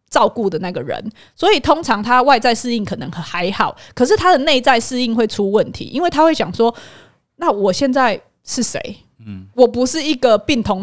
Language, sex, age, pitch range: Chinese, female, 20-39, 195-260 Hz